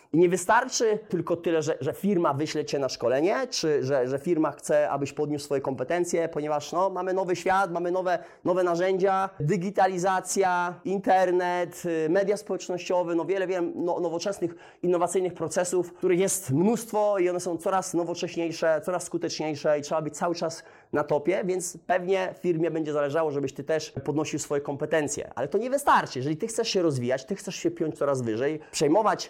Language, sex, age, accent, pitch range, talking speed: Polish, male, 30-49, native, 150-190 Hz, 170 wpm